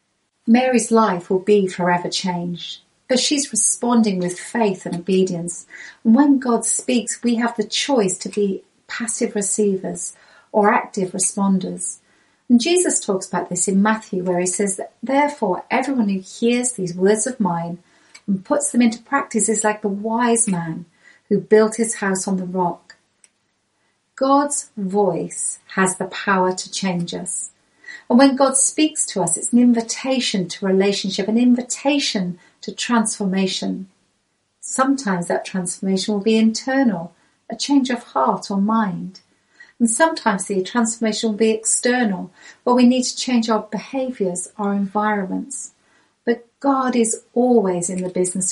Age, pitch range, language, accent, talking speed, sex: 40-59, 190-240 Hz, English, British, 150 wpm, female